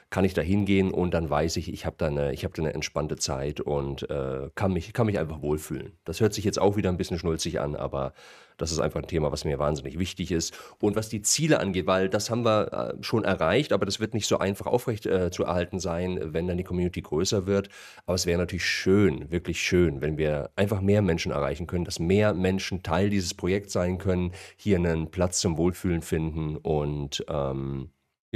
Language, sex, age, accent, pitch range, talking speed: German, male, 40-59, German, 75-95 Hz, 220 wpm